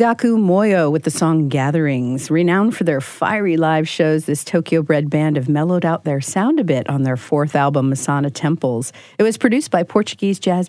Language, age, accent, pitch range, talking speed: English, 50-69, American, 140-180 Hz, 190 wpm